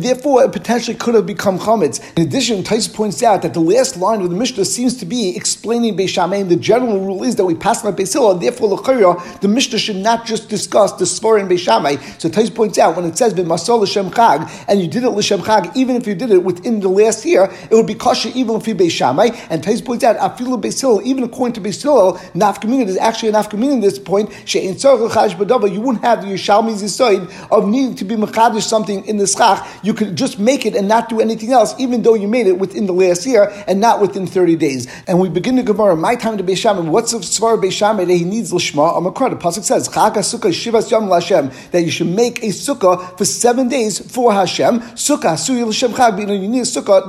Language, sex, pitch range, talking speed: English, male, 190-235 Hz, 220 wpm